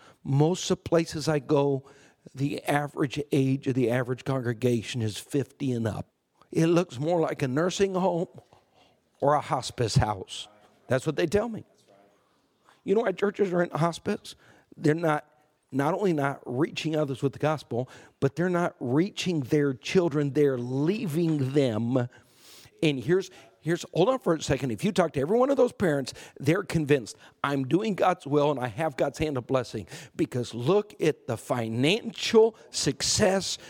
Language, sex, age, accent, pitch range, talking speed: English, male, 50-69, American, 135-175 Hz, 170 wpm